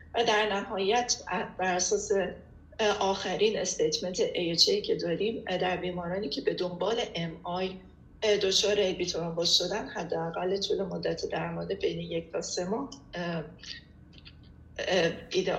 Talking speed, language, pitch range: 110 wpm, Persian, 180-225 Hz